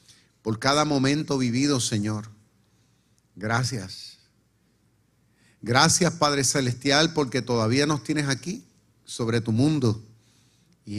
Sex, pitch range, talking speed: male, 110-135 Hz, 100 wpm